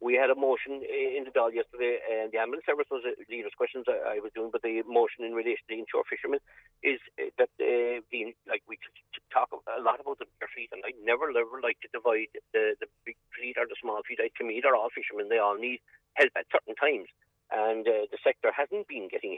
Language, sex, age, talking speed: English, male, 50-69, 250 wpm